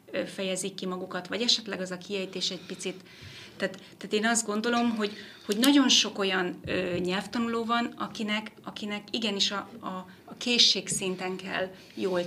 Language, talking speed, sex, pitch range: Hungarian, 155 wpm, female, 180-200 Hz